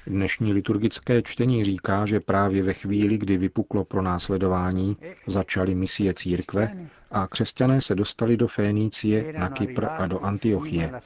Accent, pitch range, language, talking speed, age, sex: native, 90-110 Hz, Czech, 140 wpm, 40-59, male